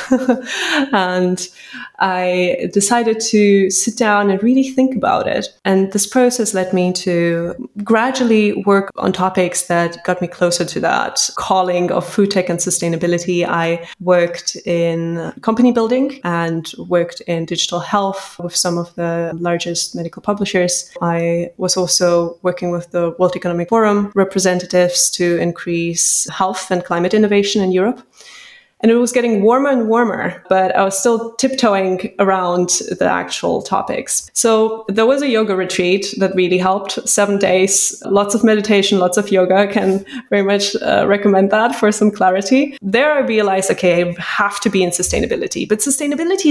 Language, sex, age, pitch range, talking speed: English, female, 20-39, 180-225 Hz, 160 wpm